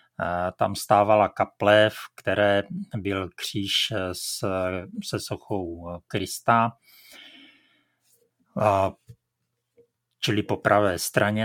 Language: Czech